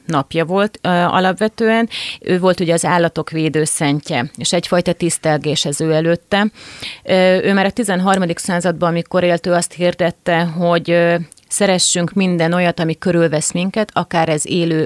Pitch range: 165-185 Hz